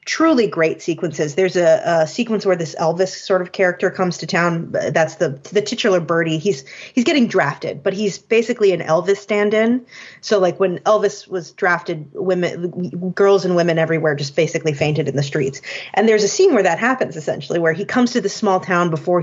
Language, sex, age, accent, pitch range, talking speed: English, female, 30-49, American, 165-205 Hz, 200 wpm